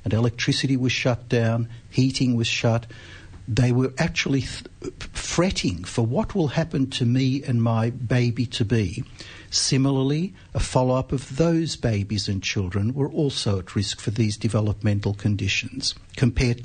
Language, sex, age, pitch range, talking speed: English, male, 60-79, 115-140 Hz, 135 wpm